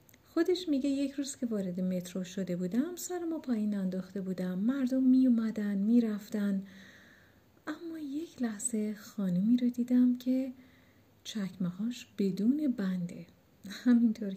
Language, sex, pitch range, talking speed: Persian, female, 195-260 Hz, 120 wpm